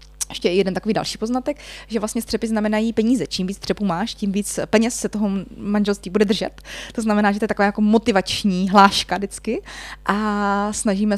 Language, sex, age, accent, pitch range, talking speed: Czech, female, 20-39, native, 180-205 Hz, 185 wpm